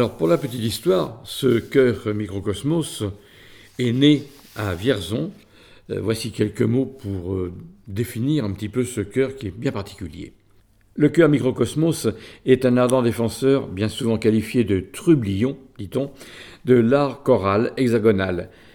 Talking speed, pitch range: 140 wpm, 105-130 Hz